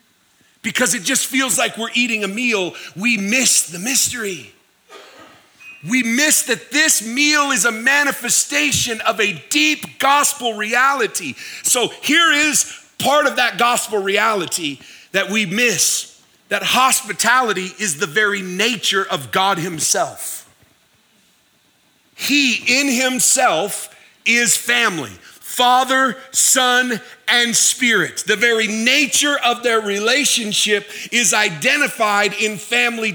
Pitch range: 205-260 Hz